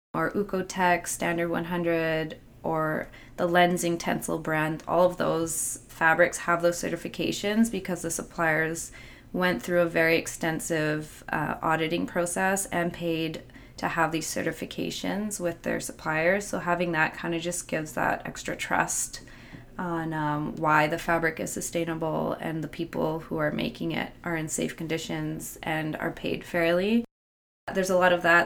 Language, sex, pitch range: English, female, 160-180 Hz